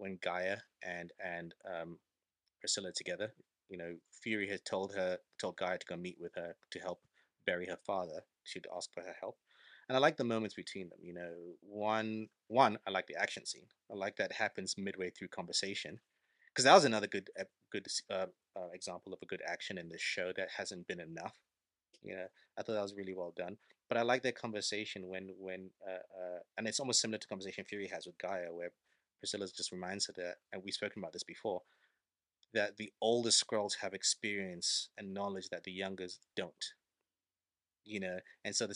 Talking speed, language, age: 200 wpm, English, 30-49